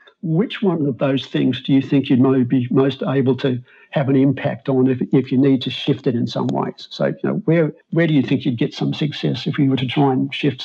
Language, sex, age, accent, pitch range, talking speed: English, male, 50-69, Australian, 135-160 Hz, 260 wpm